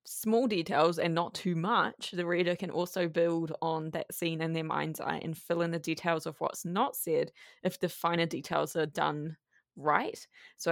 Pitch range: 165-190 Hz